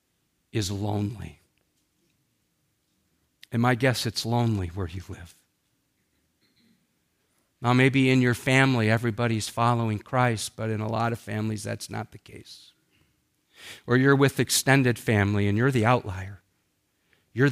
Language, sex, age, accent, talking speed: English, male, 50-69, American, 130 wpm